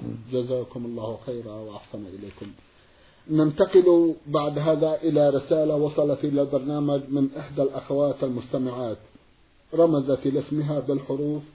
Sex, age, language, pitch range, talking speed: male, 50-69, Arabic, 140-170 Hz, 105 wpm